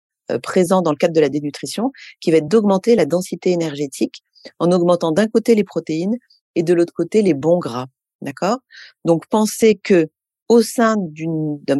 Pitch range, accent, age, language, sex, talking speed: 160-200 Hz, French, 40-59, French, female, 185 wpm